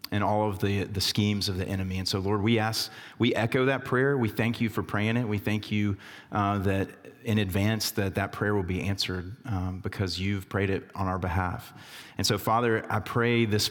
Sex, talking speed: male, 225 wpm